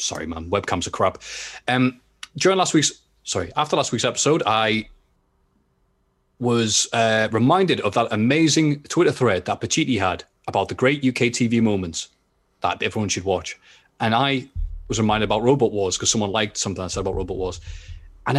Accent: British